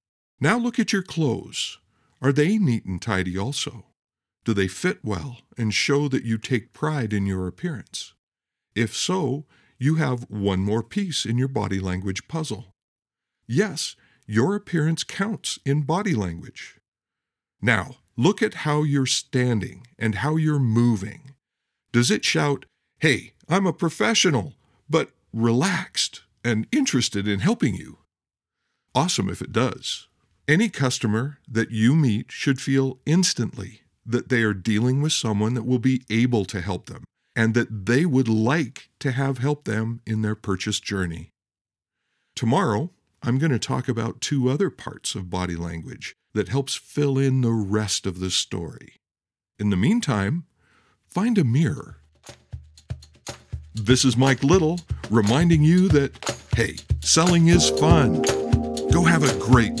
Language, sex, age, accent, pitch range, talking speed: English, male, 50-69, American, 105-145 Hz, 145 wpm